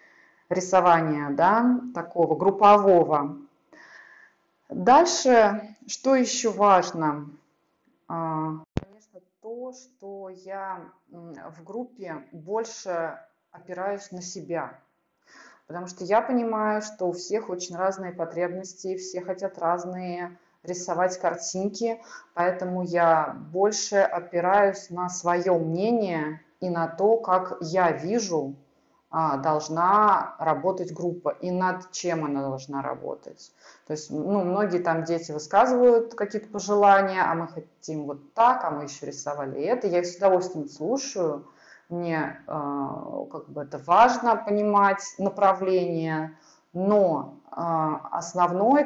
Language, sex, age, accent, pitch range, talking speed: Russian, female, 30-49, native, 165-205 Hz, 110 wpm